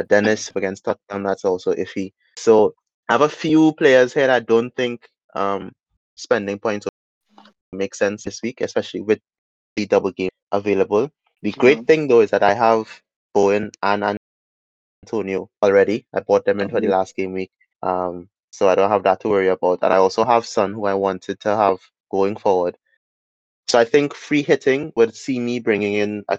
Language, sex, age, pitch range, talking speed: English, male, 20-39, 95-110 Hz, 190 wpm